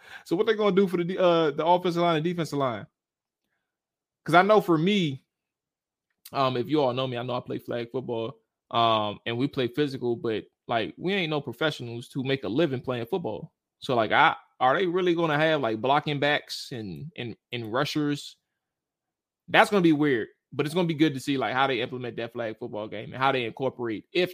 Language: English